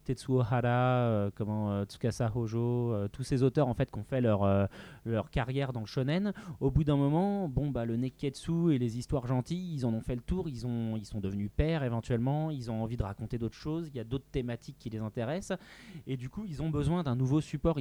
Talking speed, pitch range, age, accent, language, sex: 245 wpm, 110-140 Hz, 30-49, French, French, male